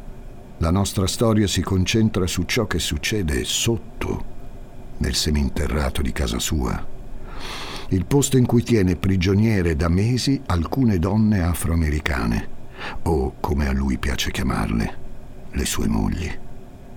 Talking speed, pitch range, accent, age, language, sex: 125 wpm, 75-110 Hz, native, 60-79, Italian, male